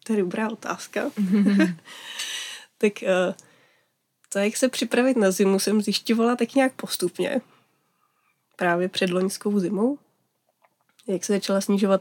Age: 20-39